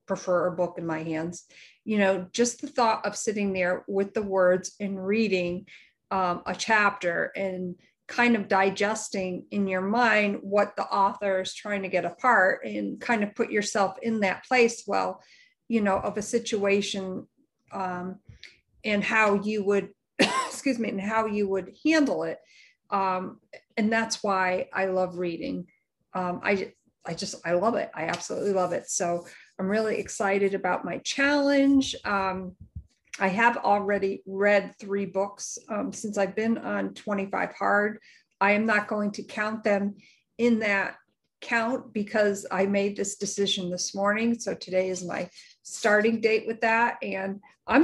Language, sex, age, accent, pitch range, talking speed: English, female, 40-59, American, 190-225 Hz, 165 wpm